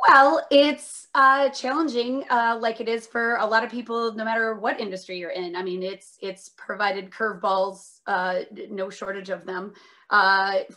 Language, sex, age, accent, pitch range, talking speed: English, female, 30-49, American, 195-235 Hz, 175 wpm